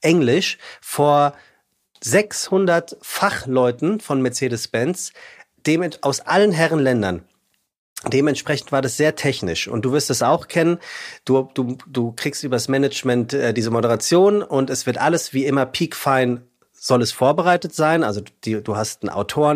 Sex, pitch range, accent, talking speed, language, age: male, 115-150 Hz, German, 150 wpm, German, 40-59